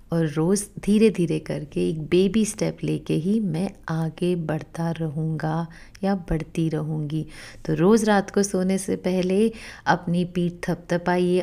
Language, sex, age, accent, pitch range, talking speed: Hindi, female, 30-49, native, 170-255 Hz, 145 wpm